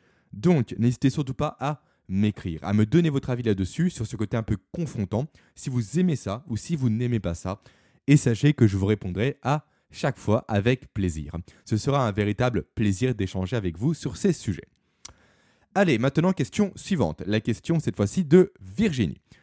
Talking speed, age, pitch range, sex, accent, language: 185 wpm, 20-39, 100-150 Hz, male, French, French